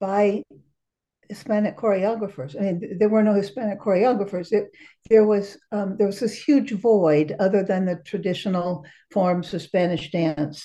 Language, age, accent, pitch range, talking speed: English, 60-79, American, 170-215 Hz, 135 wpm